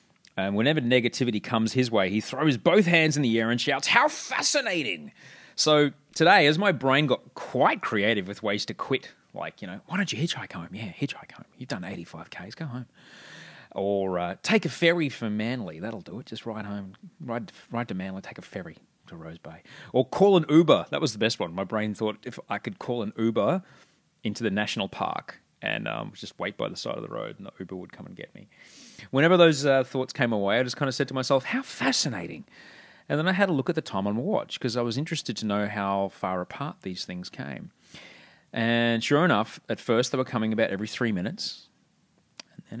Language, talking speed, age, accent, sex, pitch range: English, 225 wpm, 30-49, Australian, male, 105-150 Hz